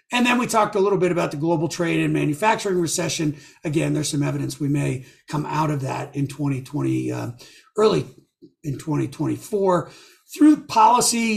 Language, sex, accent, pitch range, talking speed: English, male, American, 160-200 Hz, 170 wpm